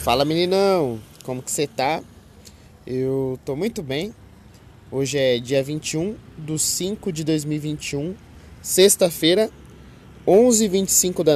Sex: male